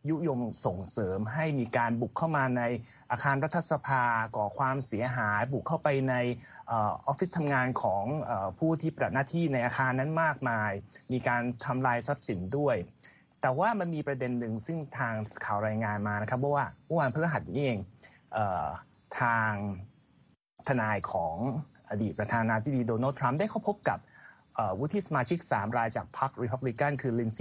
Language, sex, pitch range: Thai, male, 115-150 Hz